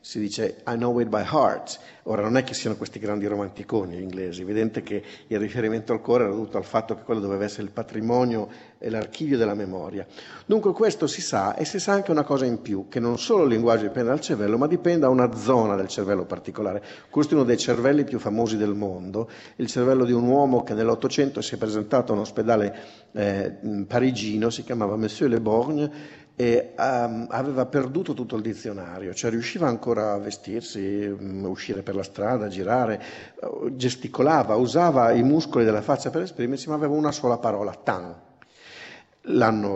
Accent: native